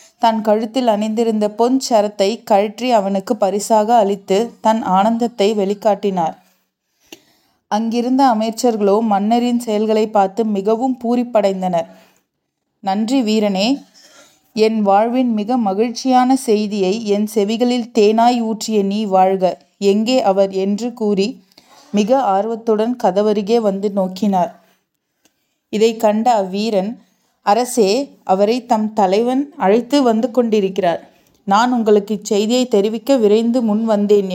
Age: 30-49